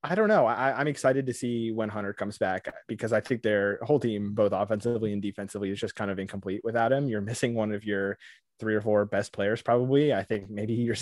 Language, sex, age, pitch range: English, male, 20-39, 100-120 Hz